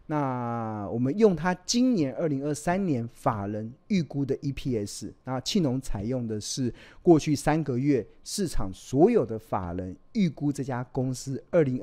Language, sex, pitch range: Chinese, male, 115-150 Hz